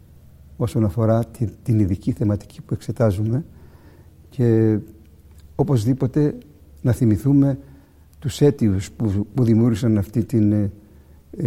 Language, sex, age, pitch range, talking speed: Greek, male, 60-79, 80-120 Hz, 105 wpm